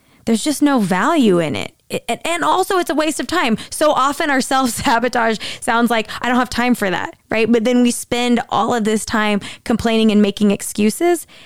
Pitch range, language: 200-255 Hz, English